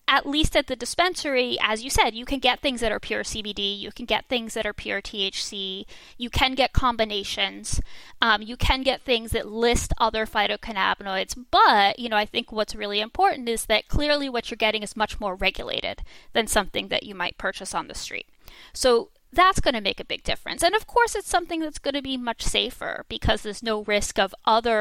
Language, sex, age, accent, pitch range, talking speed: English, female, 10-29, American, 220-300 Hz, 215 wpm